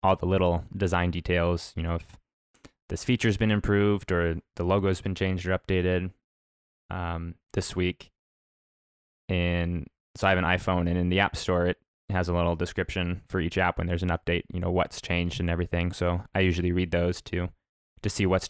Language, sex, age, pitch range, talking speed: English, male, 20-39, 85-95 Hz, 200 wpm